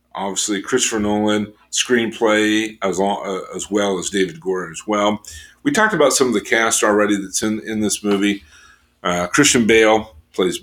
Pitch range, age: 95-115 Hz, 50-69